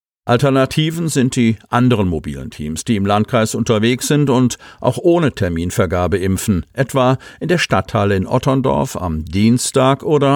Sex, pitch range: male, 95-125 Hz